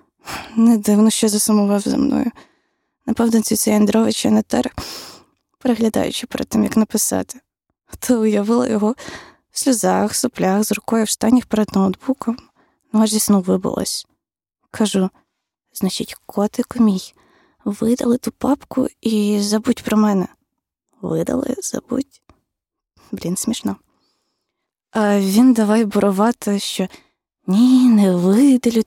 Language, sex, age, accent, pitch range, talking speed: Ukrainian, female, 20-39, native, 205-250 Hz, 115 wpm